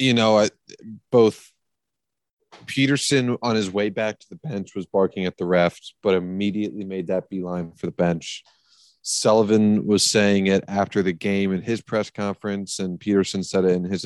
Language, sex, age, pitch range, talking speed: English, male, 30-49, 95-105 Hz, 175 wpm